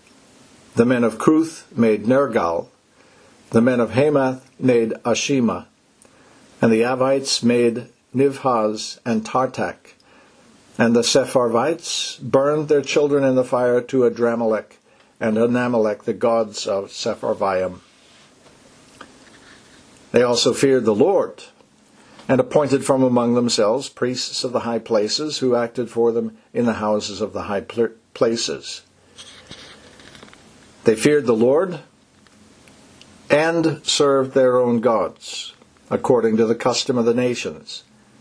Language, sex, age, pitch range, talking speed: English, male, 60-79, 115-130 Hz, 120 wpm